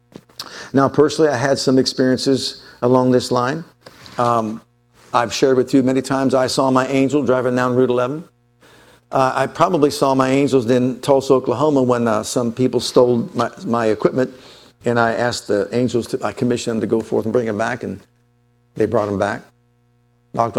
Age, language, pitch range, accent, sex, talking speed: 50-69, English, 120-140 Hz, American, male, 185 wpm